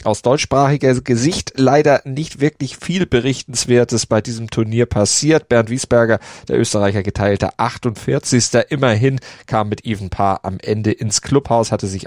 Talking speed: 145 wpm